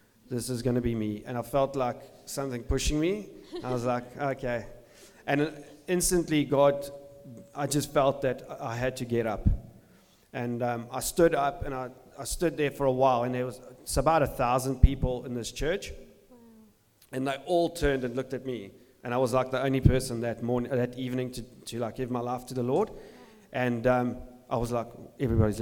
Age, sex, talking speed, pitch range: 40-59, male, 205 wpm, 120-140 Hz